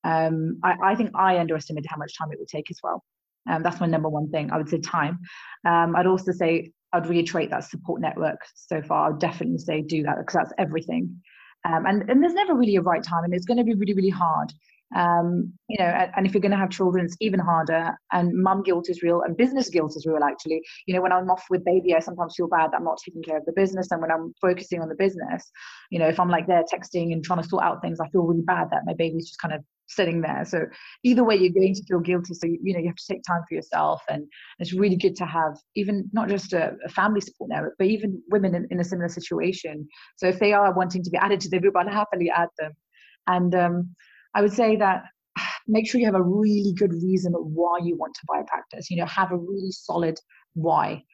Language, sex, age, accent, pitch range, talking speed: English, female, 30-49, British, 165-195 Hz, 255 wpm